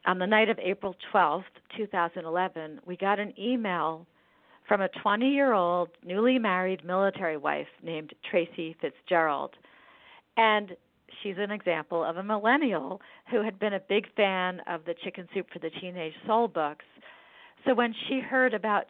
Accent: American